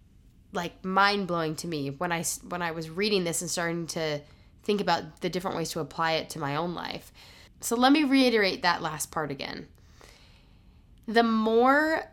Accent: American